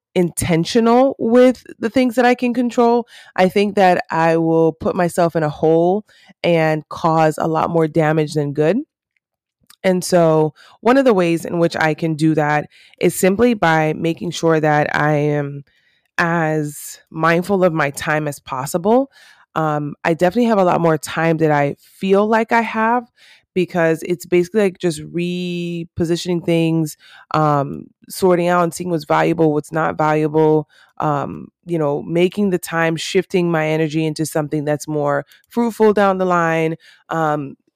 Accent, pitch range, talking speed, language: American, 155-190 Hz, 160 wpm, English